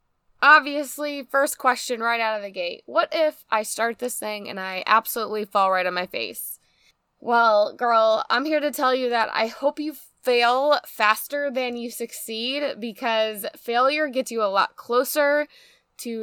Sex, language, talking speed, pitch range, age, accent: female, English, 170 wpm, 215-275 Hz, 10-29, American